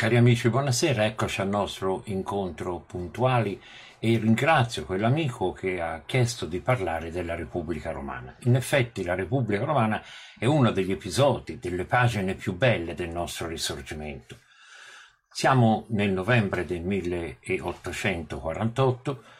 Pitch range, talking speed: 90-125 Hz, 125 wpm